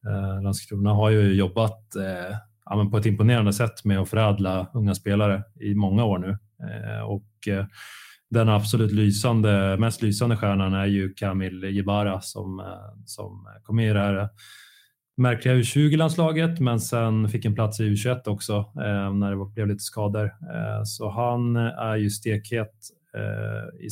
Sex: male